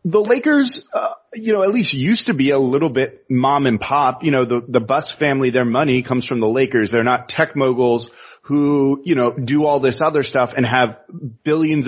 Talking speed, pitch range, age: 215 wpm, 125-180 Hz, 30-49